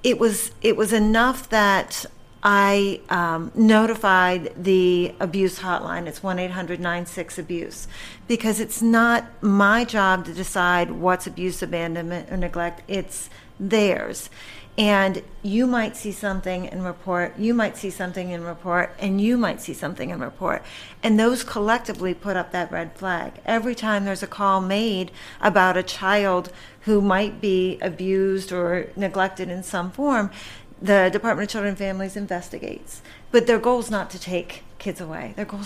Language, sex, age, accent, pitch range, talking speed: English, female, 50-69, American, 180-210 Hz, 155 wpm